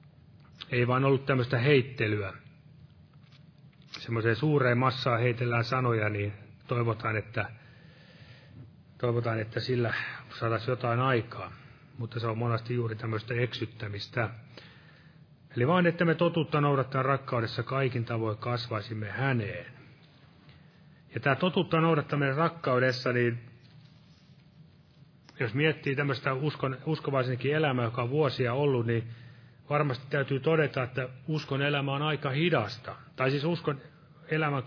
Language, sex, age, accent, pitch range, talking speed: Finnish, male, 30-49, native, 120-150 Hz, 115 wpm